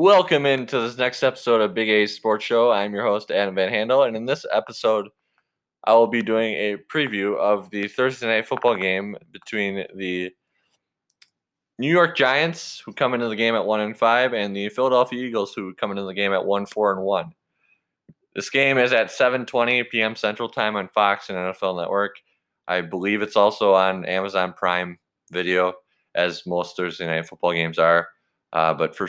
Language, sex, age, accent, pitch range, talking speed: English, male, 20-39, American, 90-115 Hz, 190 wpm